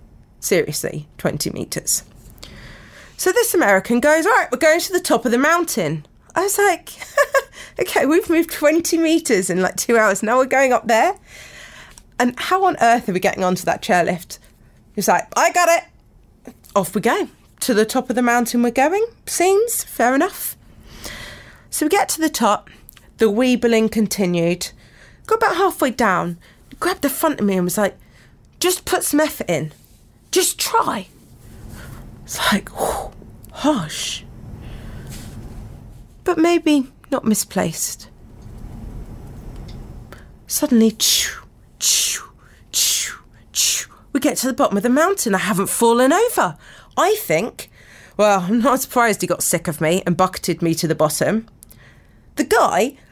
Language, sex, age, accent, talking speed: English, female, 30-49, British, 145 wpm